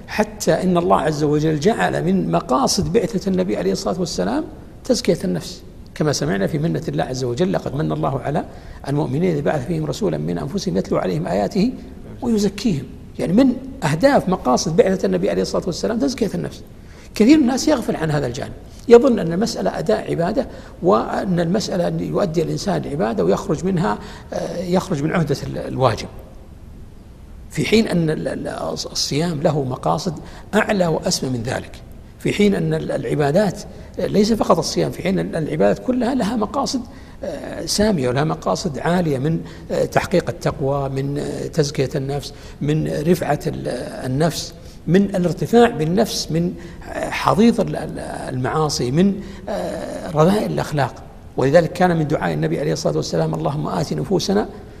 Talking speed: 140 wpm